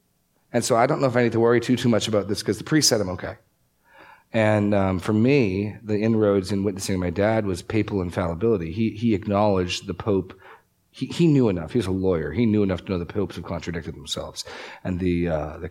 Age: 40-59